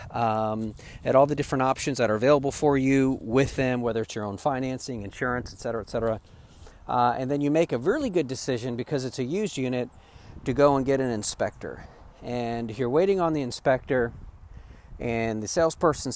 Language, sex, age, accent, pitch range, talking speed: English, male, 40-59, American, 110-145 Hz, 195 wpm